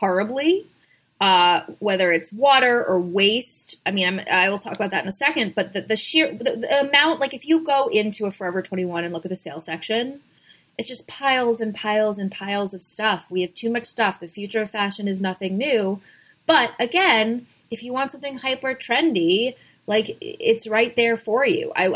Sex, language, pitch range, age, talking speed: female, English, 190-245 Hz, 20-39, 205 wpm